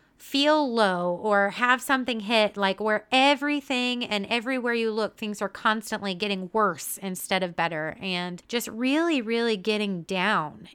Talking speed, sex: 150 wpm, female